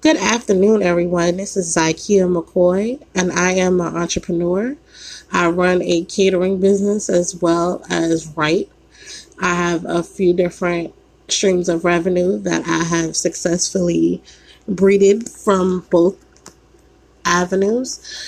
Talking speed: 120 wpm